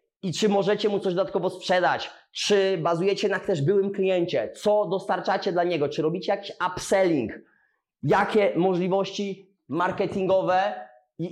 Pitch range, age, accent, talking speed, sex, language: 150-195 Hz, 20-39, native, 135 wpm, male, Polish